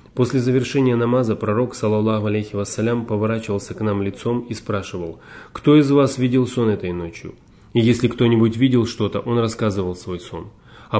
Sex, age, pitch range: male, 30-49, 105-125 Hz